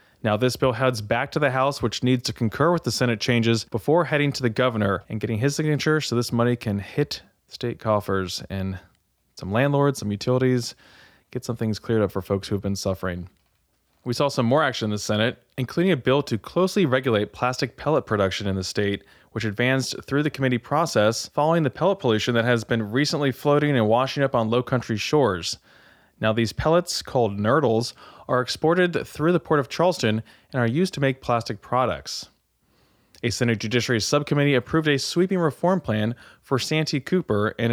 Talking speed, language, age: 195 wpm, English, 20-39